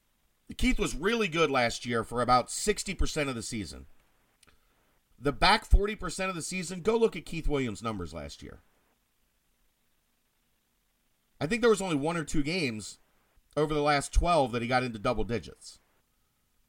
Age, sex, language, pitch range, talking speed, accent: 40-59, male, English, 120-170 Hz, 160 wpm, American